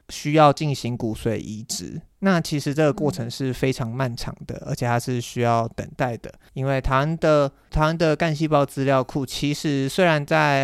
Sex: male